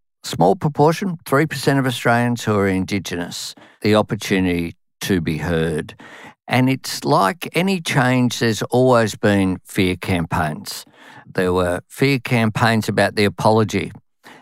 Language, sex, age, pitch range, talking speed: English, male, 50-69, 100-125 Hz, 125 wpm